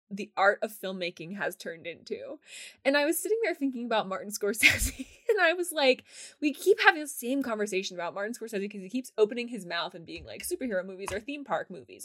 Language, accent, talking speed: English, American, 220 wpm